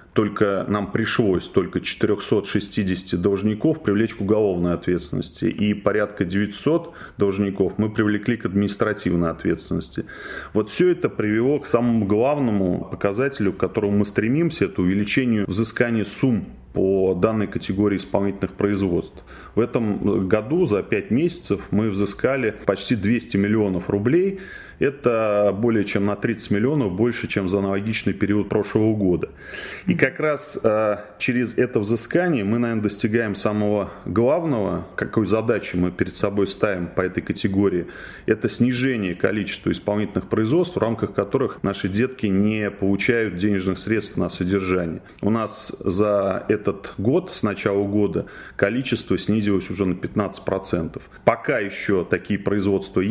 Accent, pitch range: native, 100-115 Hz